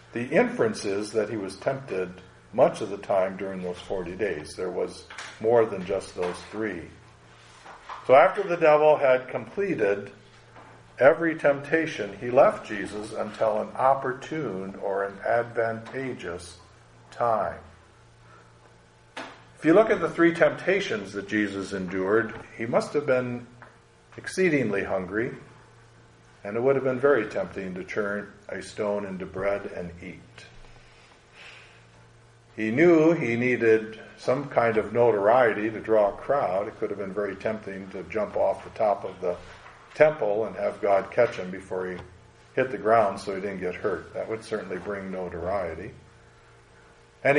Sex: male